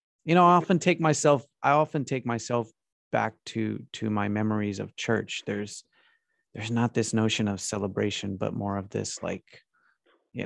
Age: 30-49